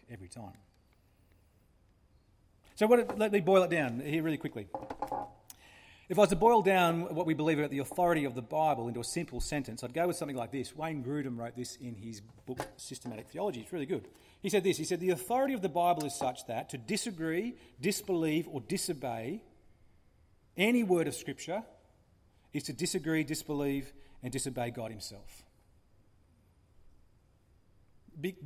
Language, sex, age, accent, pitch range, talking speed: English, male, 40-59, Australian, 115-185 Hz, 165 wpm